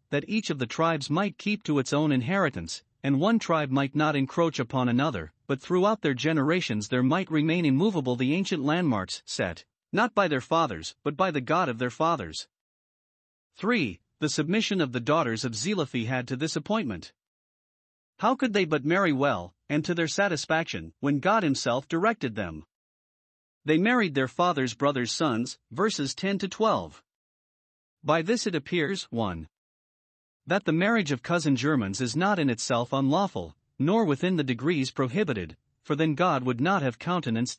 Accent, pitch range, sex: American, 125-175 Hz, male